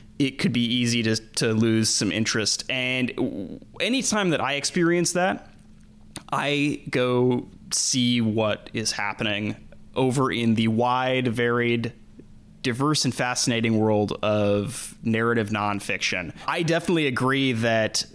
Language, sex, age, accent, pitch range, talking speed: English, male, 20-39, American, 110-130 Hz, 125 wpm